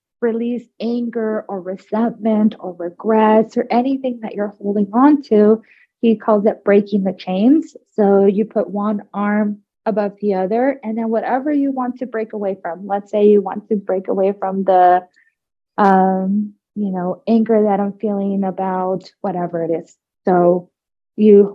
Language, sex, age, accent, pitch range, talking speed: English, female, 20-39, American, 195-225 Hz, 160 wpm